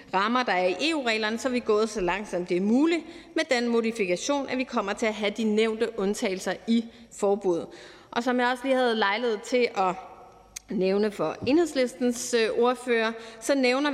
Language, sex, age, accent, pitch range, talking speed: Danish, female, 30-49, native, 195-235 Hz, 185 wpm